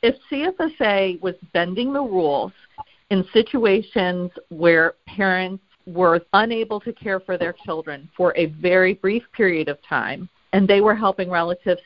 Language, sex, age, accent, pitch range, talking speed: English, female, 50-69, American, 170-205 Hz, 145 wpm